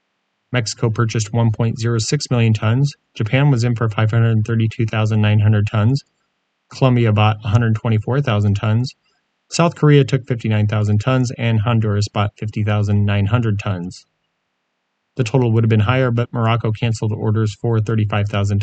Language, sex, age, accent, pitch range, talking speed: English, male, 30-49, American, 105-120 Hz, 120 wpm